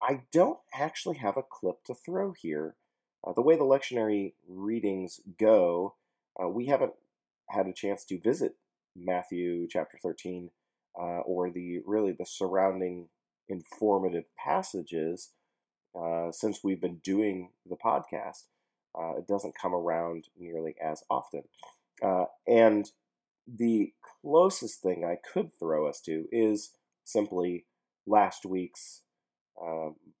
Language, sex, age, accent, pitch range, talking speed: English, male, 30-49, American, 90-115 Hz, 130 wpm